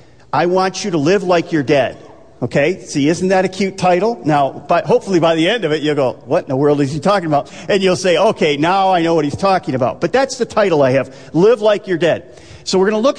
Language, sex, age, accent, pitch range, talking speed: English, male, 50-69, American, 150-205 Hz, 270 wpm